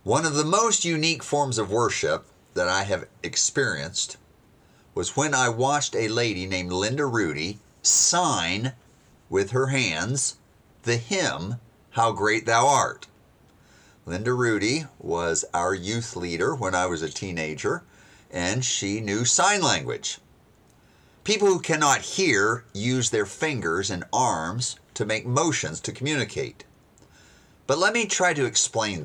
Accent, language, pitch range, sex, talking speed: American, English, 105-145 Hz, male, 140 wpm